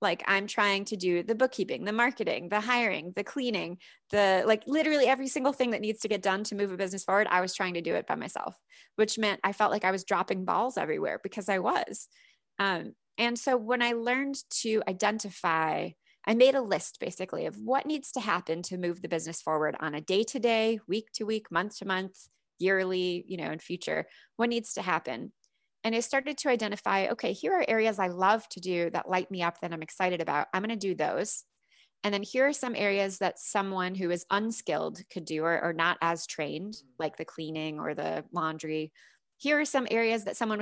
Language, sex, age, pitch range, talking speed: English, female, 20-39, 175-225 Hz, 210 wpm